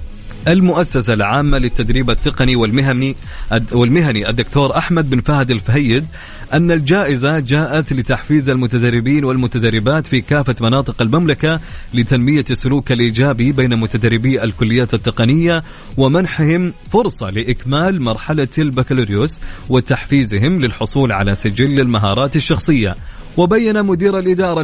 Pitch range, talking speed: 120-155 Hz, 100 wpm